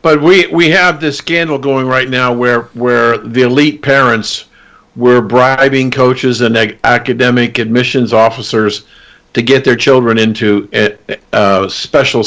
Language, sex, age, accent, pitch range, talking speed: English, male, 50-69, American, 120-140 Hz, 140 wpm